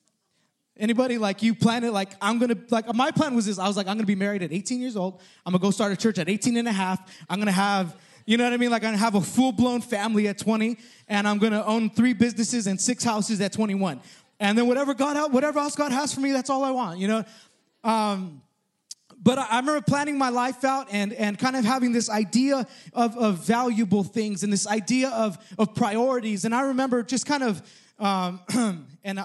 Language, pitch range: English, 190-235 Hz